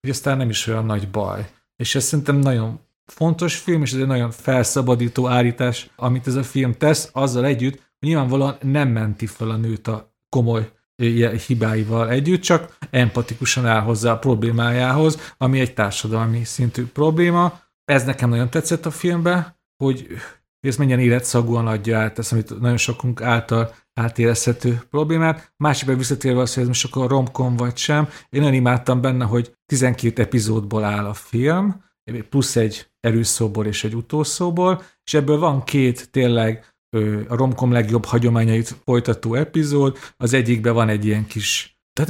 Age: 40-59